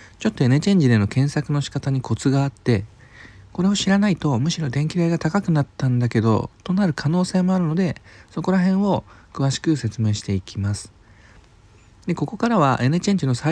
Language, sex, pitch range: Japanese, male, 105-165 Hz